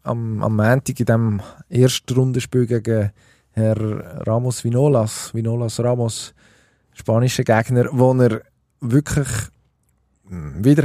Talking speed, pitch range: 95 wpm, 115-135 Hz